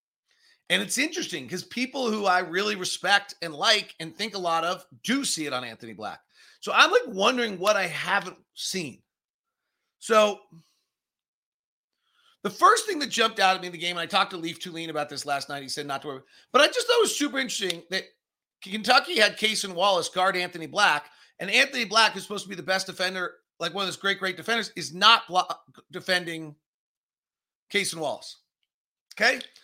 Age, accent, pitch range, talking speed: 40-59, American, 160-215 Hz, 200 wpm